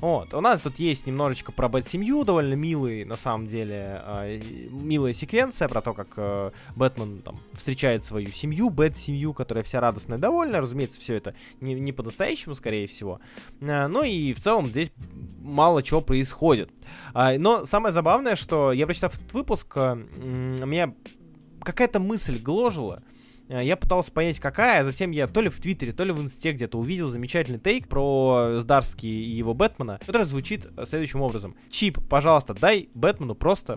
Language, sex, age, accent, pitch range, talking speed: Russian, male, 20-39, native, 115-160 Hz, 160 wpm